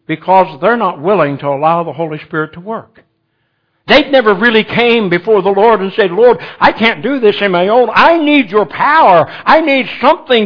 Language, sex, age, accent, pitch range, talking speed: English, male, 60-79, American, 175-245 Hz, 200 wpm